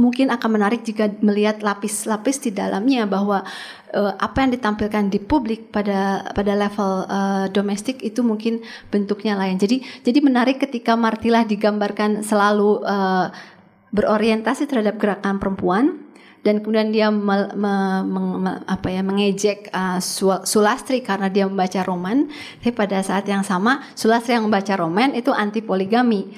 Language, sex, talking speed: Indonesian, female, 145 wpm